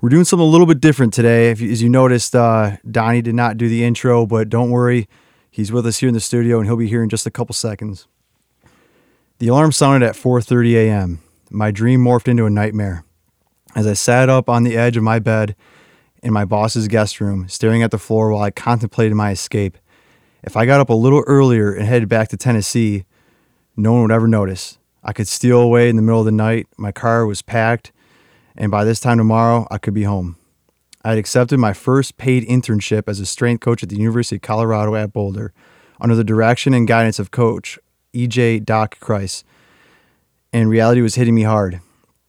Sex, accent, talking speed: male, American, 210 wpm